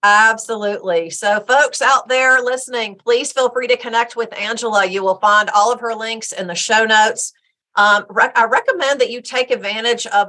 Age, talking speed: 40-59, 185 wpm